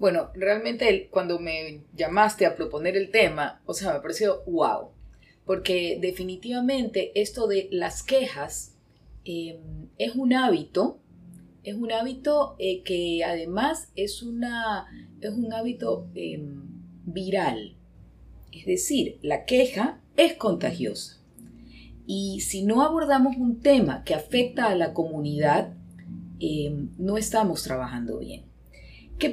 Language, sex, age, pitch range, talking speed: Spanish, female, 30-49, 165-245 Hz, 120 wpm